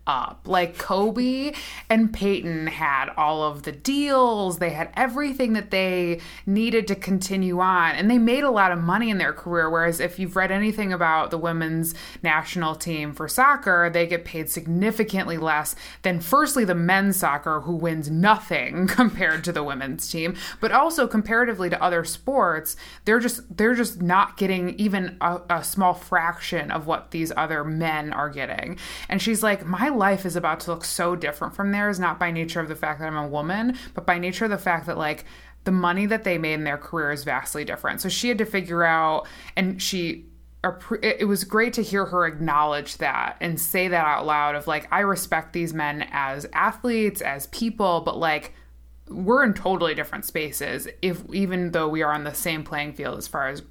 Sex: female